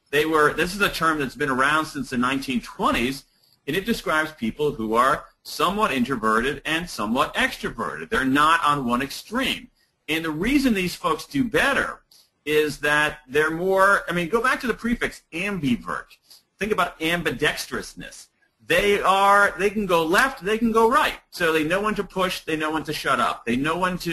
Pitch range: 135-185 Hz